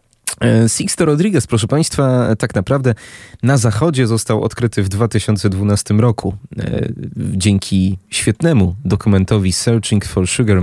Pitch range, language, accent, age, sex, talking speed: 95-120 Hz, Polish, native, 30-49, male, 105 wpm